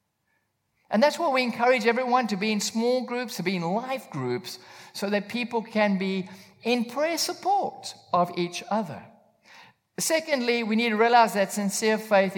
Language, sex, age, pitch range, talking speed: English, male, 50-69, 185-270 Hz, 170 wpm